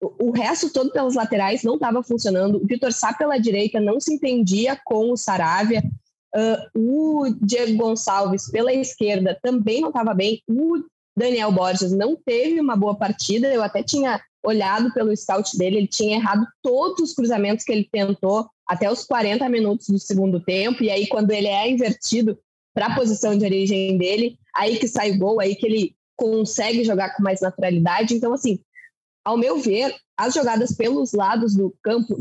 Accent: Brazilian